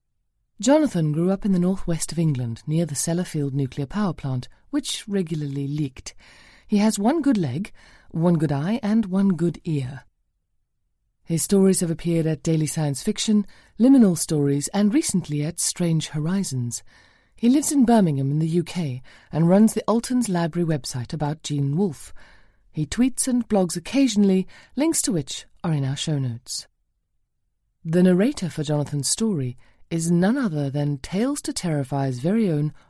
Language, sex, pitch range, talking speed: English, female, 140-200 Hz, 160 wpm